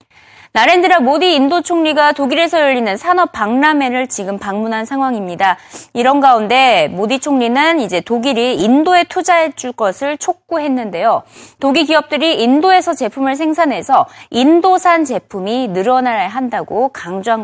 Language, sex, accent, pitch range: Korean, female, native, 220-320 Hz